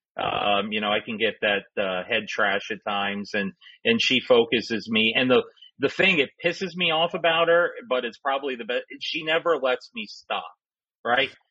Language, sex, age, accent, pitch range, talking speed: English, male, 40-59, American, 120-180 Hz, 200 wpm